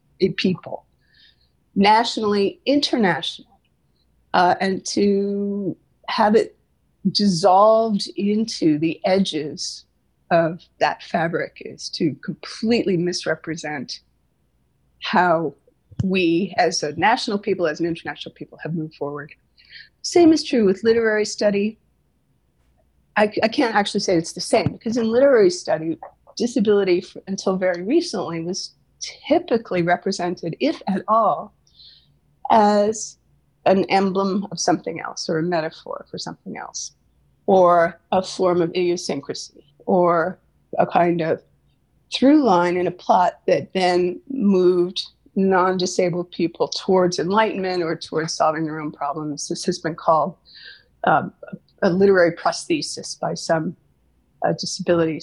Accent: American